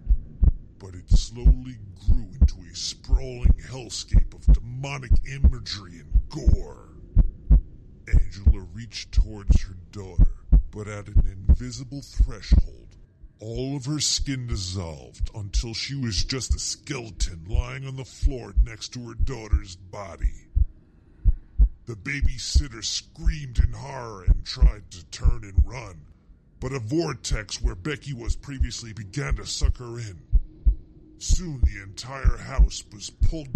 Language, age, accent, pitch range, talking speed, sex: English, 50-69, American, 85-120 Hz, 130 wpm, female